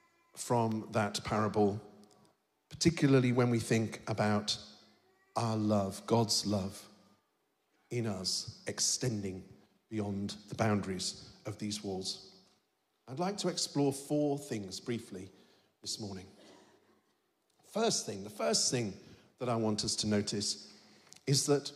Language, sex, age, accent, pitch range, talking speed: English, male, 50-69, British, 105-155 Hz, 120 wpm